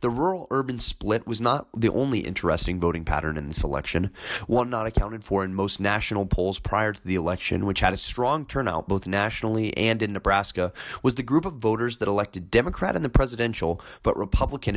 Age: 20-39